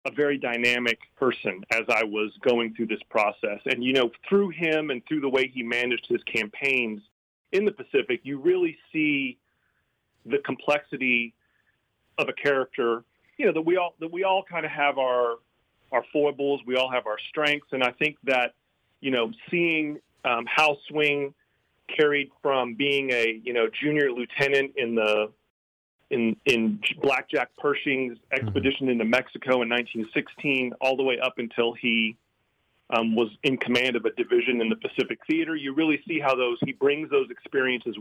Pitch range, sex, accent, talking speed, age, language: 115-150 Hz, male, American, 175 wpm, 40-59, English